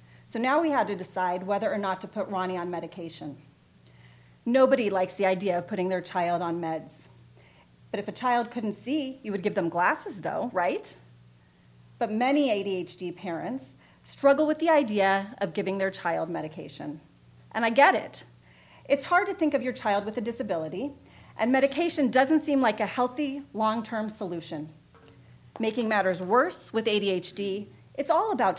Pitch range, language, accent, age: 180-265 Hz, English, American, 40-59